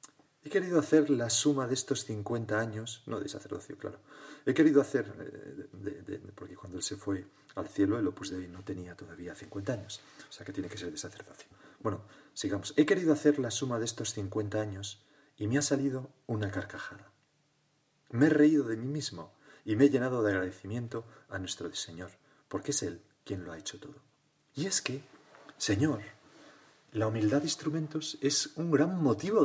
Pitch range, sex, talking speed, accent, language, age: 105-150 Hz, male, 190 wpm, Spanish, Spanish, 40-59